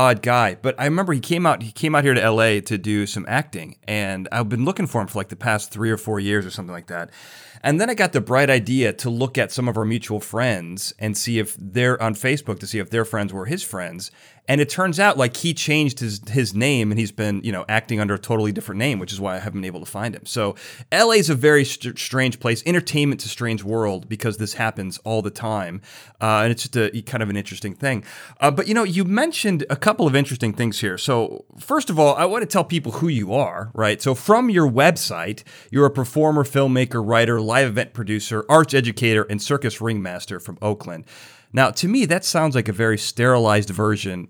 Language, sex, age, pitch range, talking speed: English, male, 30-49, 105-140 Hz, 240 wpm